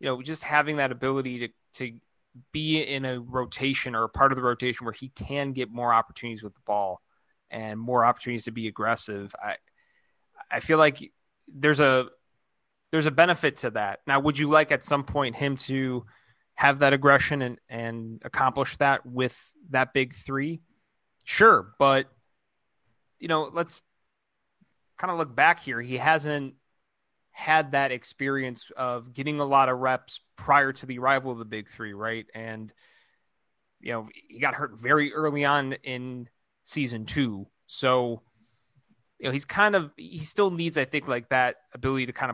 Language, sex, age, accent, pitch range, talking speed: English, male, 30-49, American, 120-145 Hz, 175 wpm